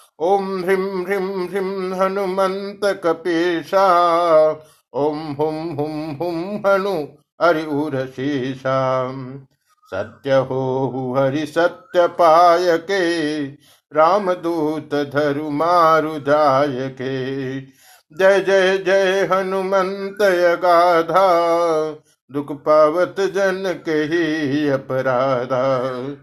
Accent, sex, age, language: native, male, 50-69, Hindi